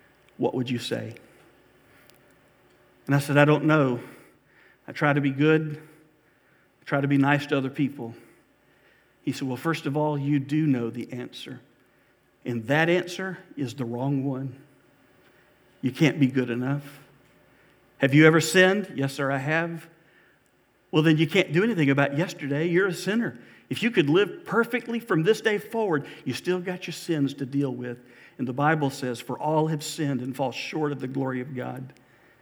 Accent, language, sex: American, English, male